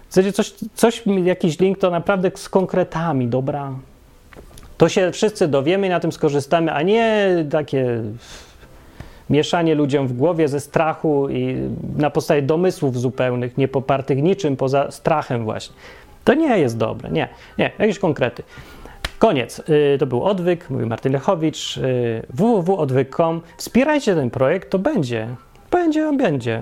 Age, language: 30-49, Polish